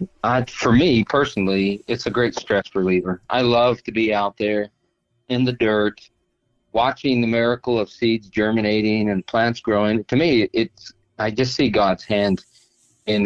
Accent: American